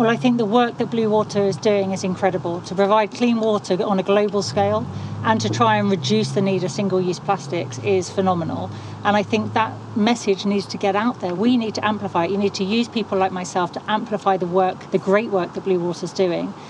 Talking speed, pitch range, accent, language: 235 wpm, 190-220 Hz, British, English